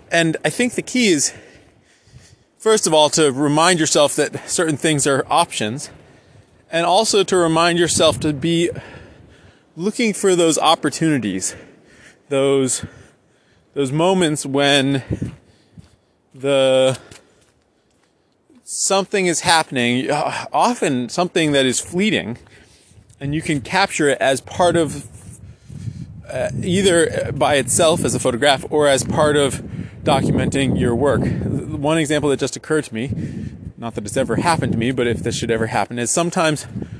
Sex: male